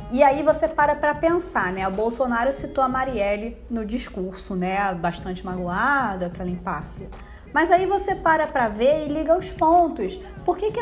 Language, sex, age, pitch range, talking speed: Portuguese, female, 20-39, 230-305 Hz, 175 wpm